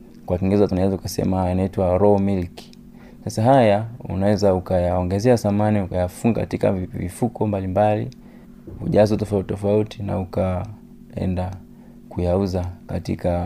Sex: male